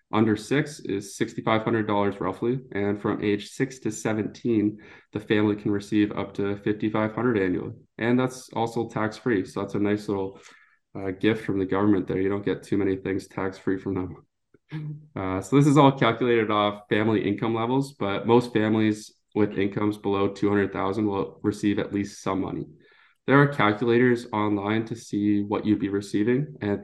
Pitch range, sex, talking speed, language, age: 100-120 Hz, male, 170 wpm, English, 20-39